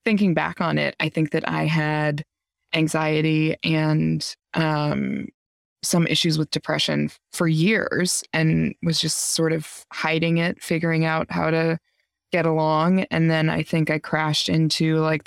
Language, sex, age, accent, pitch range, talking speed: English, female, 20-39, American, 150-170 Hz, 155 wpm